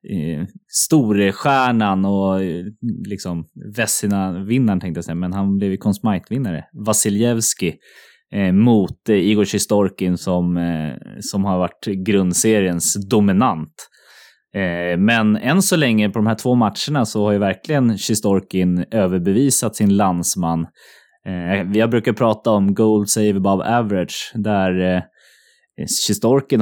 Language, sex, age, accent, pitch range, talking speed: English, male, 20-39, Swedish, 90-110 Hz, 120 wpm